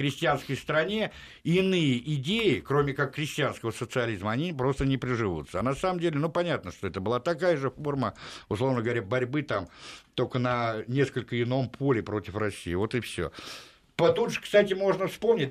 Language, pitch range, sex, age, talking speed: Russian, 125-160 Hz, male, 60-79, 165 wpm